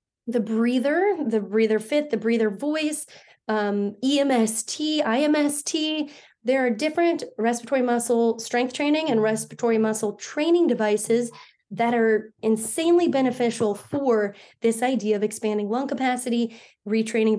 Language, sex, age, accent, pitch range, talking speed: English, female, 20-39, American, 220-260 Hz, 120 wpm